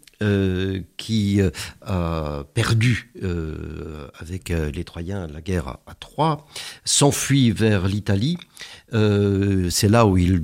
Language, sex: French, male